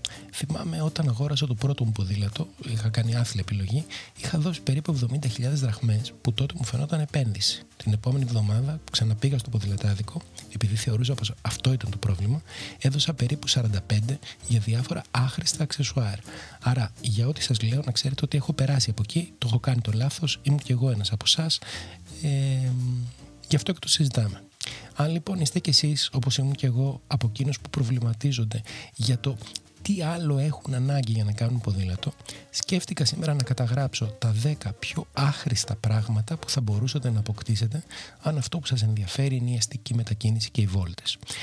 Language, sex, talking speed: Greek, male, 170 wpm